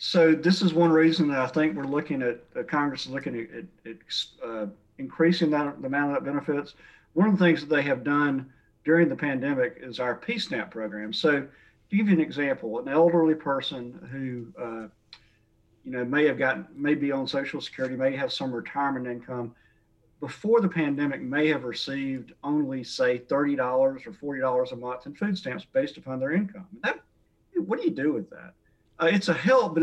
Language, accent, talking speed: English, American, 195 wpm